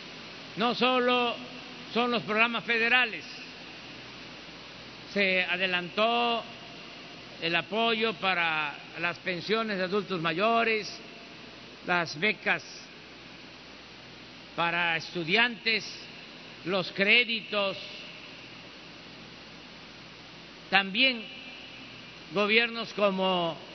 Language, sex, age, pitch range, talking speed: Spanish, male, 50-69, 175-225 Hz, 65 wpm